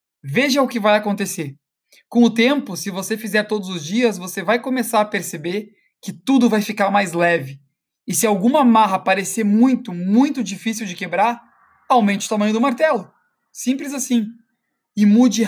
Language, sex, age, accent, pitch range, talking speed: Portuguese, male, 20-39, Brazilian, 190-235 Hz, 170 wpm